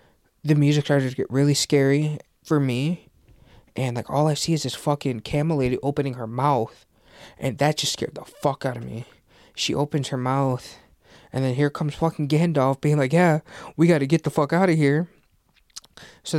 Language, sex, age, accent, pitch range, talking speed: English, male, 20-39, American, 125-150 Hz, 200 wpm